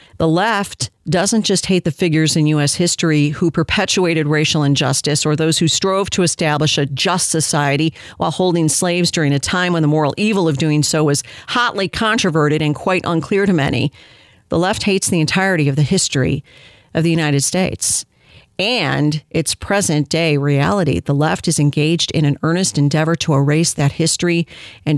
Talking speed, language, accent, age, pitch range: 180 wpm, English, American, 50-69, 150-200 Hz